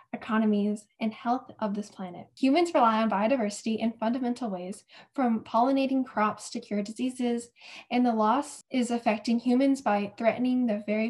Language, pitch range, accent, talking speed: English, 210-260 Hz, American, 155 wpm